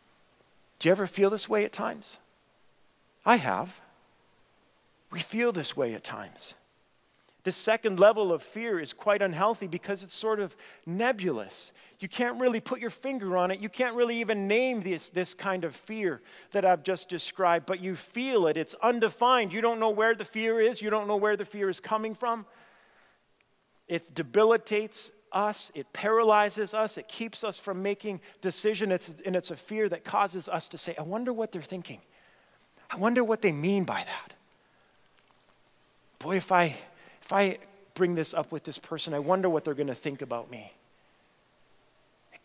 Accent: American